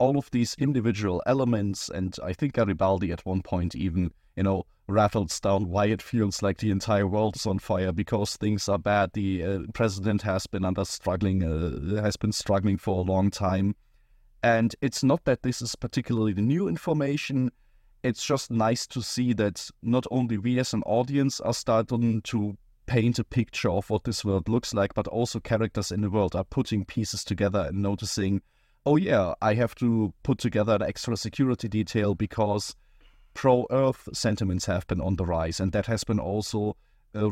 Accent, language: German, English